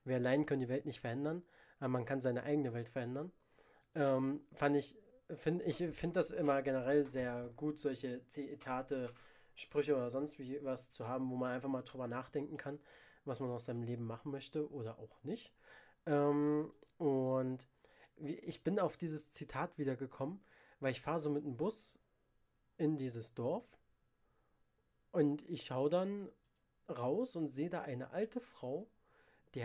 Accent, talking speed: German, 165 wpm